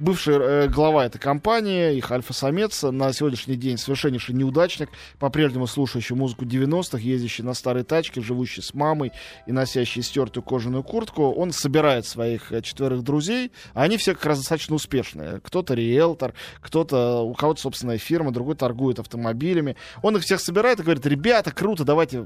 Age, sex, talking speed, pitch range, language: 20-39, male, 155 wpm, 125-170 Hz, Russian